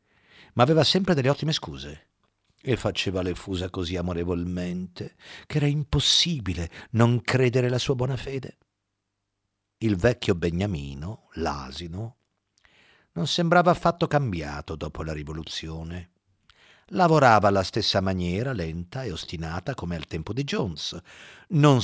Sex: male